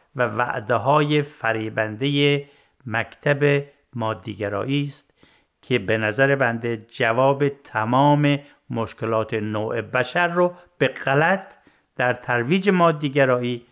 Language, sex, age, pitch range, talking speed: Persian, male, 50-69, 125-170 Hz, 95 wpm